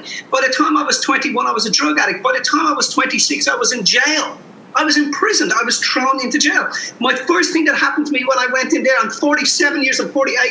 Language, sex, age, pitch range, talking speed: English, male, 30-49, 245-370 Hz, 265 wpm